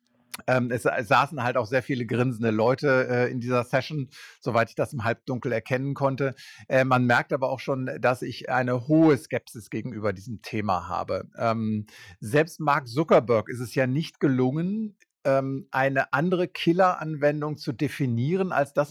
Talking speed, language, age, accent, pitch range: 150 wpm, German, 50-69, German, 125-155 Hz